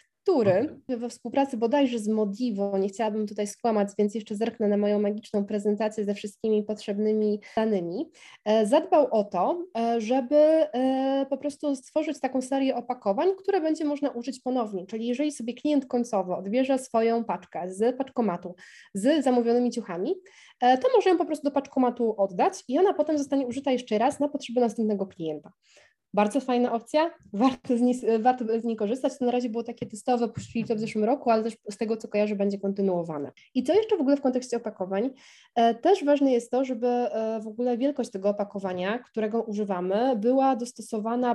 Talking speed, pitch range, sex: 170 wpm, 215-255 Hz, female